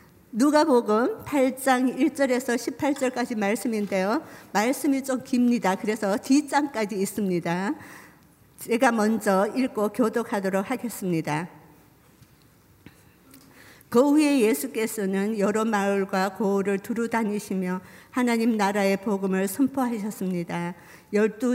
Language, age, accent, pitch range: Korean, 50-69, American, 195-240 Hz